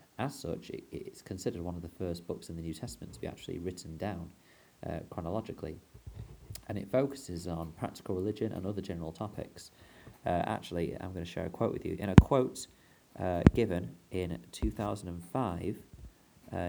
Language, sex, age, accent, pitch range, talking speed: English, male, 30-49, British, 85-105 Hz, 170 wpm